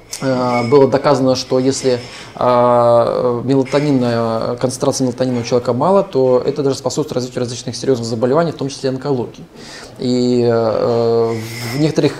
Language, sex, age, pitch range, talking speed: Russian, male, 20-39, 120-145 Hz, 120 wpm